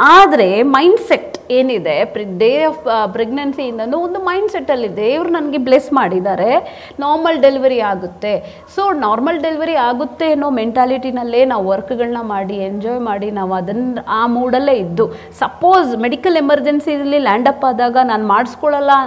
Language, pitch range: Kannada, 225-295 Hz